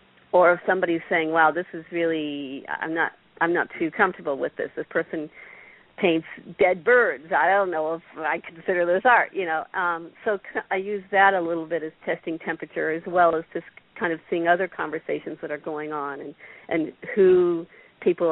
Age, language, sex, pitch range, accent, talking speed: 50-69, English, female, 160-195 Hz, American, 195 wpm